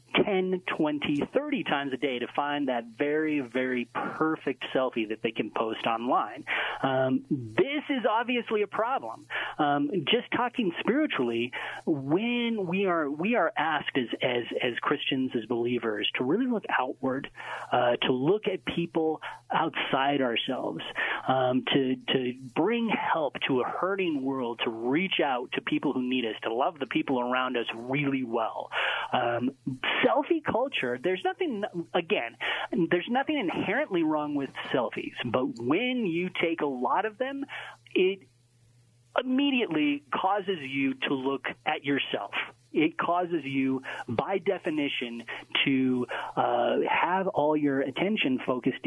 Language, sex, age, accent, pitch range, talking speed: English, male, 30-49, American, 130-210 Hz, 145 wpm